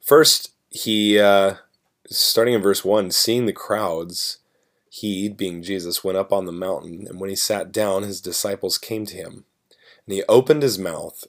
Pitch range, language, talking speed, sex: 90-105 Hz, English, 175 wpm, male